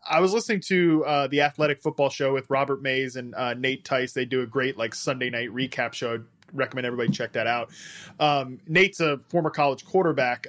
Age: 20-39